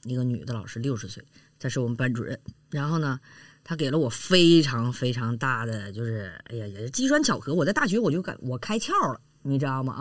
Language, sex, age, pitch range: Chinese, female, 20-39, 125-165 Hz